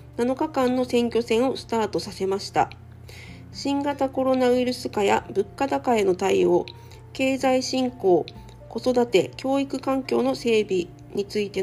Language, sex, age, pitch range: Japanese, female, 40-59, 200-250 Hz